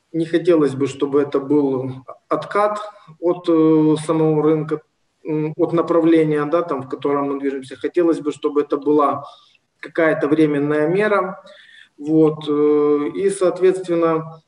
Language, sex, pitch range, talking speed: Ukrainian, male, 130-160 Hz, 120 wpm